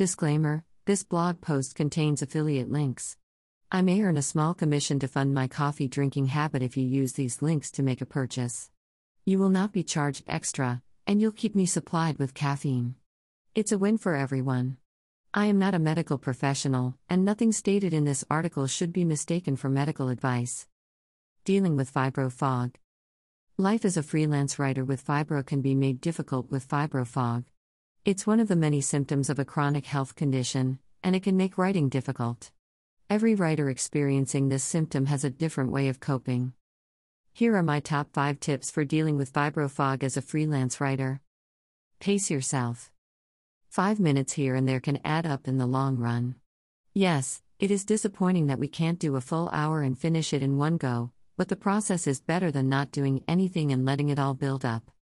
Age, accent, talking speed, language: 50-69, American, 185 wpm, English